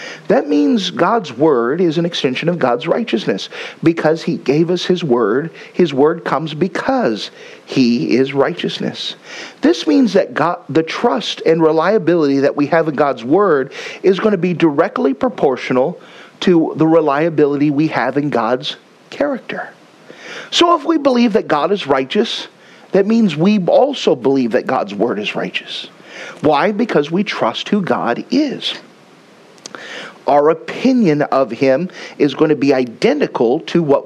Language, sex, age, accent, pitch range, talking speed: English, male, 50-69, American, 140-205 Hz, 150 wpm